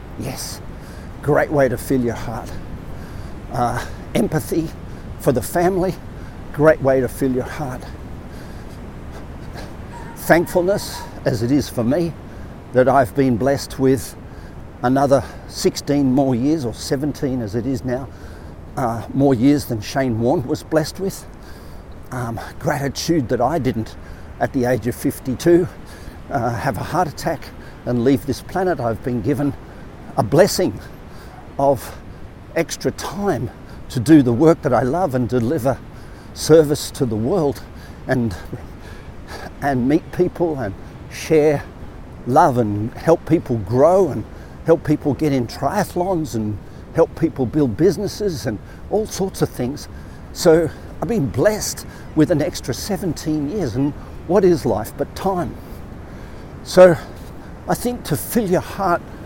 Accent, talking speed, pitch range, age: Australian, 140 wpm, 110-155 Hz, 50-69